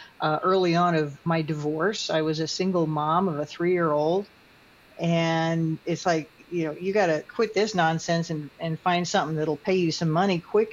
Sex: female